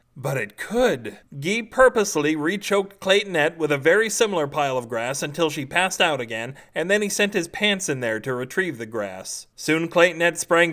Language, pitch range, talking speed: English, 135-175 Hz, 190 wpm